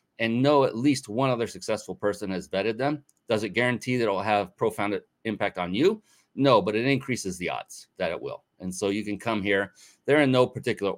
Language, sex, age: English, male, 30-49